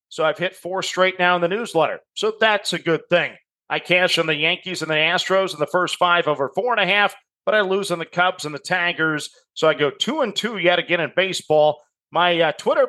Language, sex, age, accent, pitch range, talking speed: English, male, 40-59, American, 155-195 Hz, 245 wpm